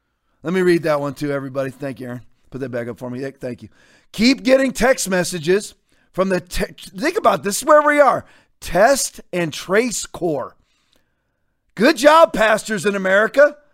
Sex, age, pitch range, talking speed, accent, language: male, 40-59, 180-245 Hz, 175 wpm, American, English